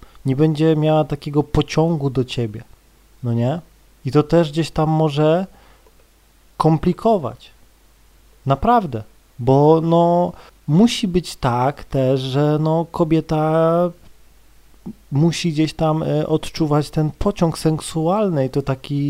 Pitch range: 140-170 Hz